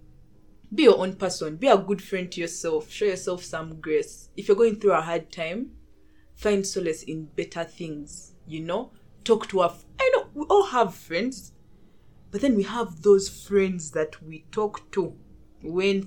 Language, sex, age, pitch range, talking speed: English, female, 20-39, 160-220 Hz, 185 wpm